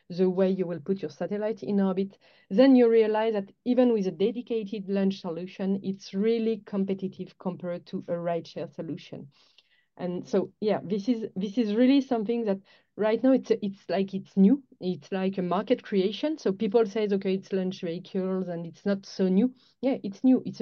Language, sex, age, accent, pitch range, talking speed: English, female, 30-49, French, 185-225 Hz, 190 wpm